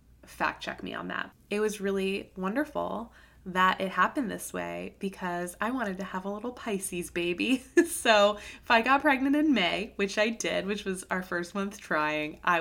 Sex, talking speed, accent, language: female, 190 wpm, American, English